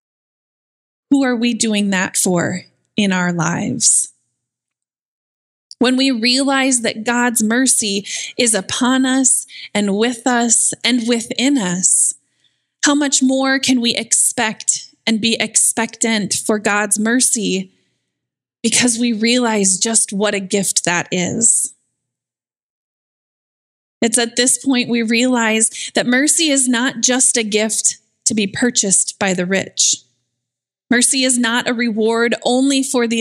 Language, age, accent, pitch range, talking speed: English, 20-39, American, 200-245 Hz, 130 wpm